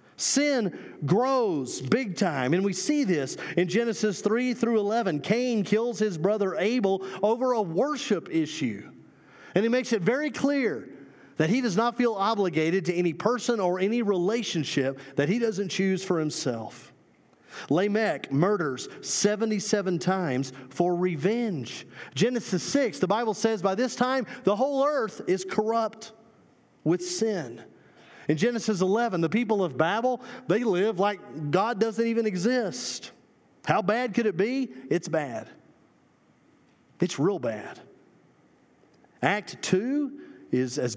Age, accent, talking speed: 40-59, American, 140 wpm